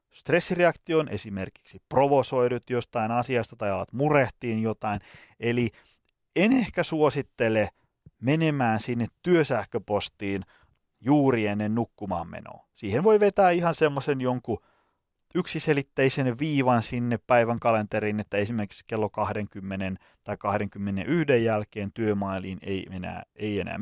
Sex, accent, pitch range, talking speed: male, native, 105-135 Hz, 110 wpm